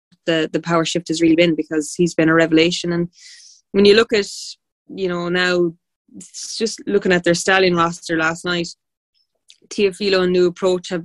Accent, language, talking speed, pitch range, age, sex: Irish, English, 180 wpm, 170-185 Hz, 20-39, female